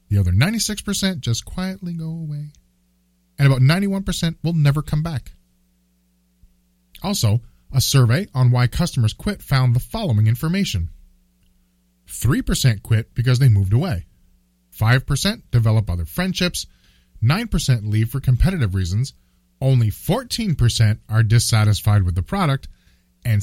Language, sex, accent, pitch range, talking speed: English, male, American, 90-145 Hz, 125 wpm